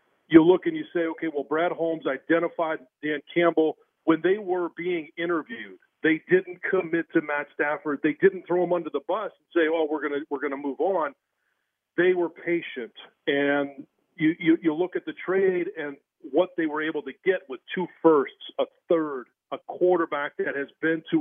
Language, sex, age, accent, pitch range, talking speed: English, male, 40-59, American, 155-190 Hz, 195 wpm